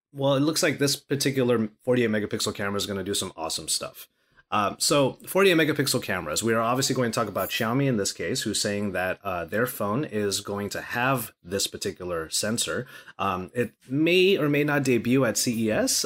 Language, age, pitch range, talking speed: English, 30-49, 100-140 Hz, 200 wpm